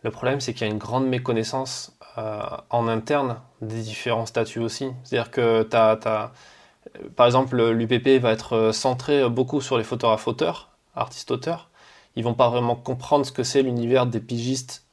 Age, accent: 20-39, French